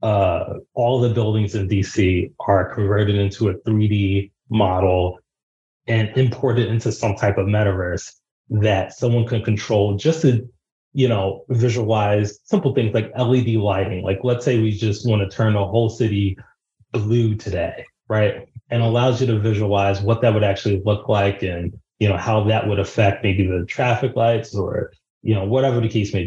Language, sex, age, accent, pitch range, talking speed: English, male, 30-49, American, 100-120 Hz, 175 wpm